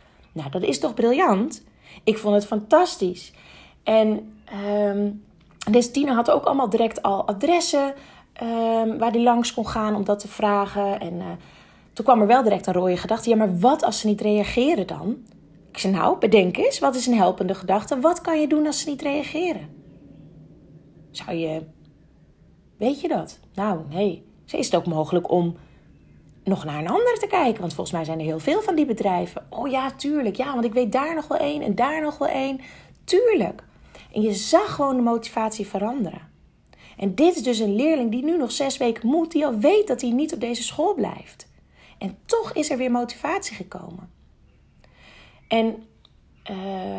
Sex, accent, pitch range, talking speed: female, Dutch, 190-280 Hz, 190 wpm